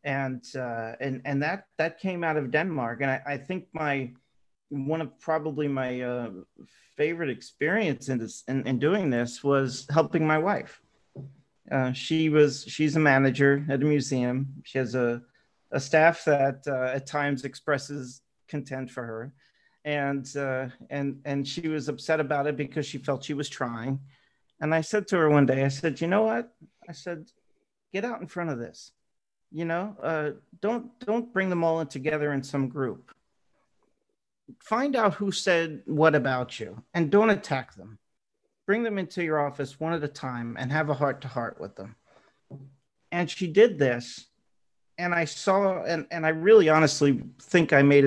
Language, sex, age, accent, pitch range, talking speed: English, male, 40-59, American, 130-160 Hz, 180 wpm